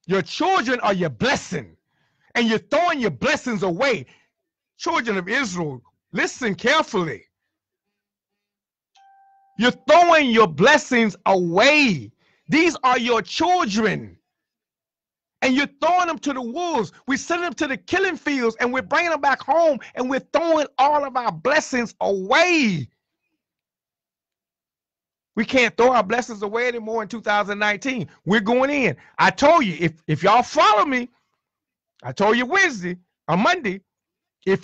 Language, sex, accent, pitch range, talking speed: English, male, American, 205-300 Hz, 140 wpm